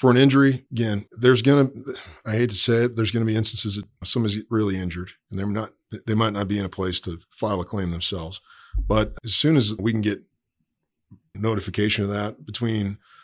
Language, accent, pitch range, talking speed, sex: English, American, 95-110 Hz, 220 wpm, male